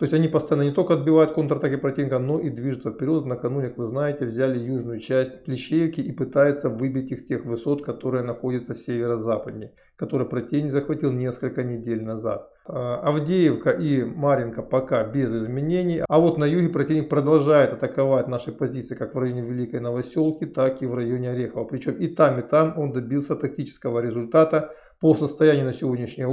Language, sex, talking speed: Russian, male, 170 wpm